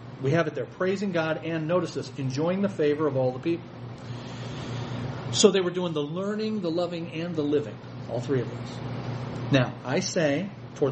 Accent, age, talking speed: American, 40-59, 190 wpm